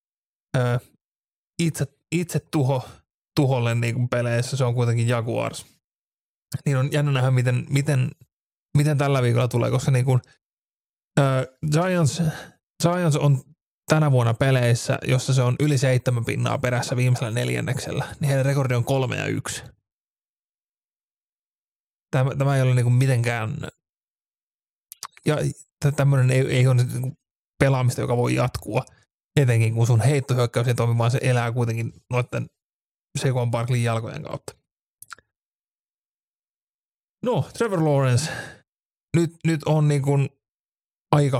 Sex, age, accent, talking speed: male, 30-49, native, 120 wpm